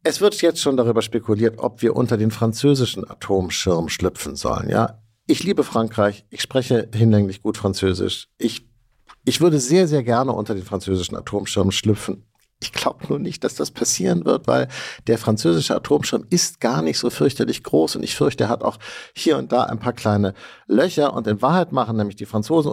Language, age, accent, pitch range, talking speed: German, 50-69, German, 105-145 Hz, 190 wpm